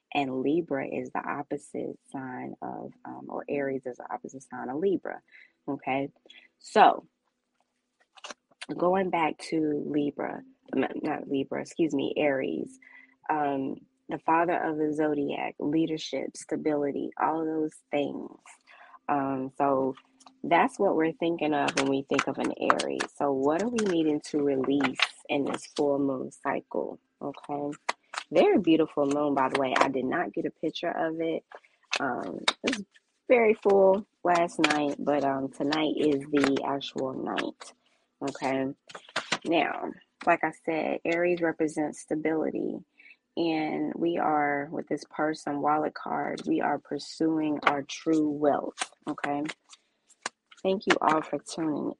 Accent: American